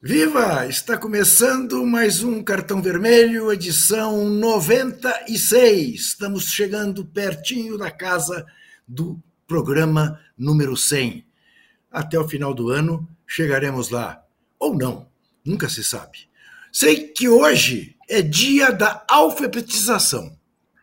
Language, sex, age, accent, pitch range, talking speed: Portuguese, male, 60-79, Brazilian, 140-200 Hz, 105 wpm